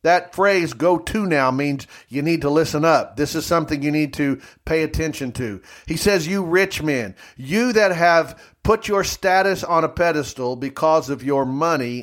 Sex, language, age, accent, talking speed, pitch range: male, English, 50-69, American, 190 wpm, 135-165 Hz